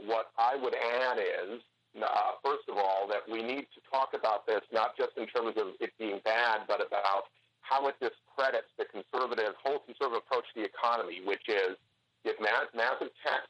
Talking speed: 190 wpm